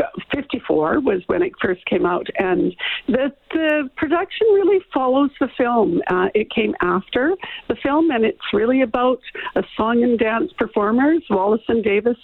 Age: 60-79